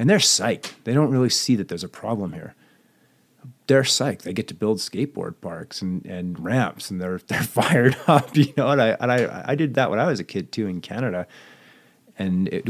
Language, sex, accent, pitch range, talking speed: English, male, American, 85-120 Hz, 220 wpm